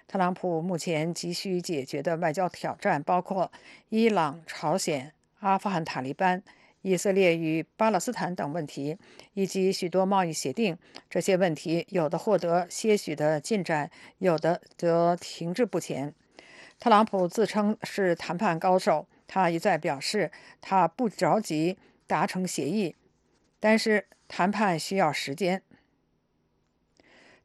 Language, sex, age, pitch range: English, female, 50-69, 165-200 Hz